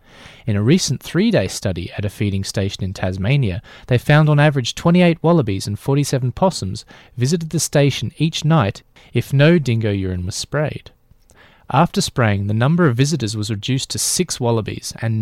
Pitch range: 105-145 Hz